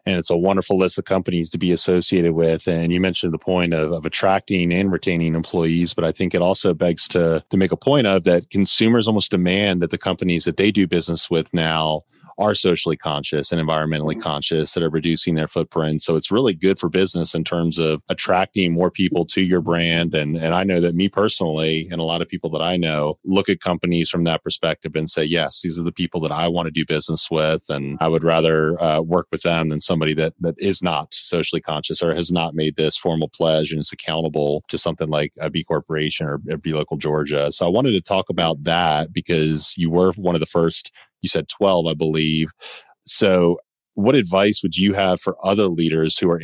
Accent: American